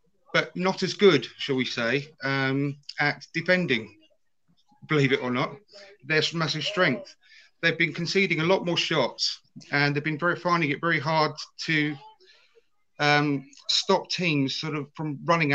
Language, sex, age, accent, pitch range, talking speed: English, male, 30-49, British, 130-160 Hz, 155 wpm